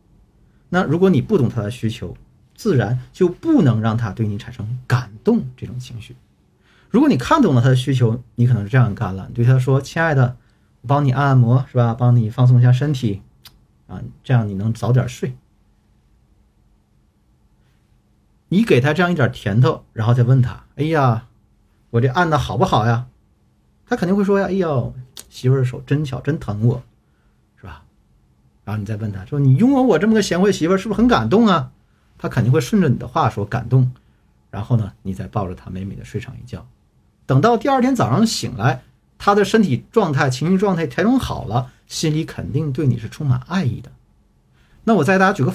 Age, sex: 50-69, male